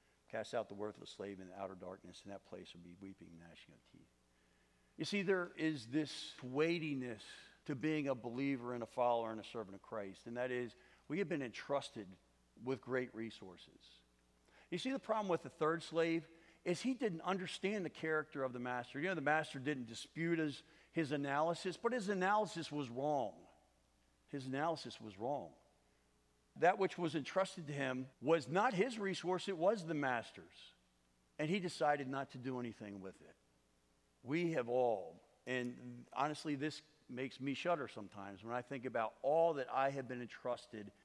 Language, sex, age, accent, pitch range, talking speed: English, male, 50-69, American, 105-150 Hz, 185 wpm